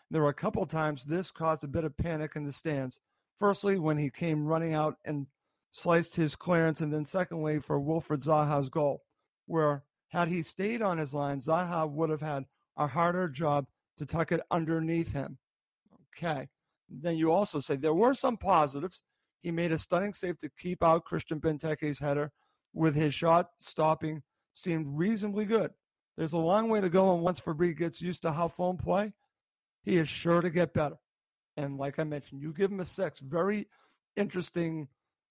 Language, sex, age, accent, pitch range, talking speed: English, male, 50-69, American, 150-175 Hz, 185 wpm